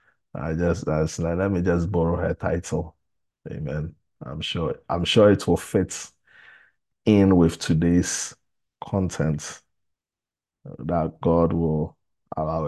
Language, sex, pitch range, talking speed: English, male, 85-115 Hz, 120 wpm